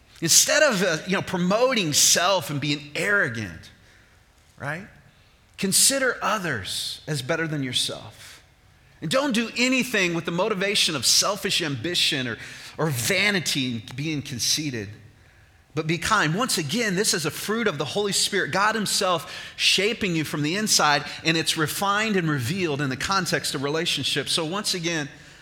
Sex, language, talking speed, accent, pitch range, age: male, English, 155 wpm, American, 110-165 Hz, 30-49